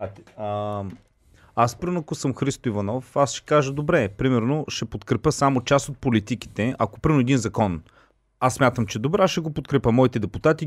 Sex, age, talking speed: male, 30-49, 175 wpm